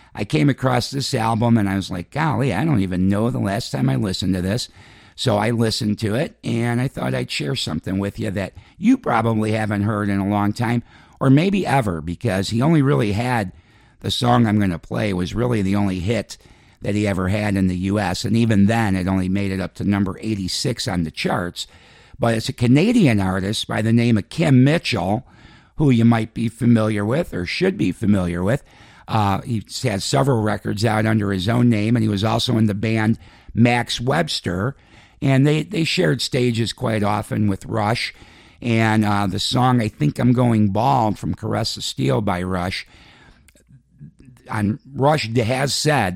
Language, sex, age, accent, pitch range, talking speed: English, male, 50-69, American, 100-125 Hz, 195 wpm